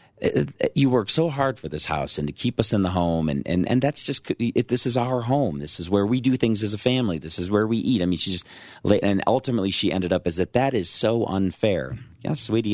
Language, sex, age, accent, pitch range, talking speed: English, male, 40-59, American, 80-110 Hz, 260 wpm